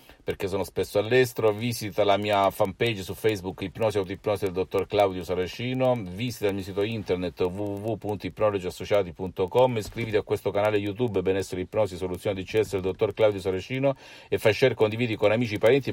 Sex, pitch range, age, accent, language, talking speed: male, 90-110 Hz, 50-69, native, Italian, 170 wpm